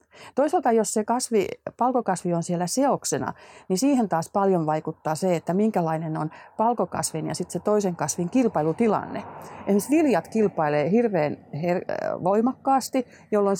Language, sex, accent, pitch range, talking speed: Finnish, female, native, 165-220 Hz, 130 wpm